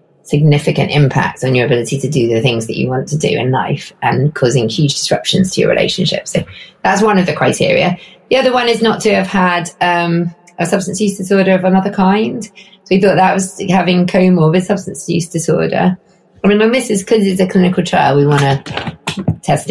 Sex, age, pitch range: female, 20-39, 150-185 Hz